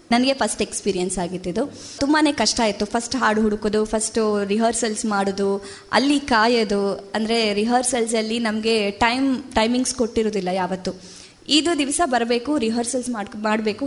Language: Kannada